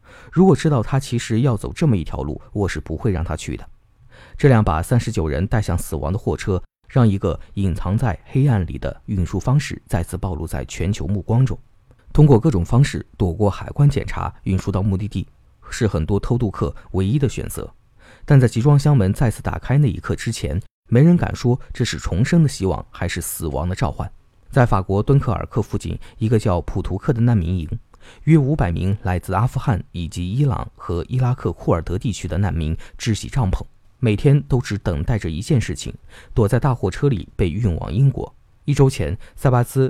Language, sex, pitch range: Chinese, male, 90-125 Hz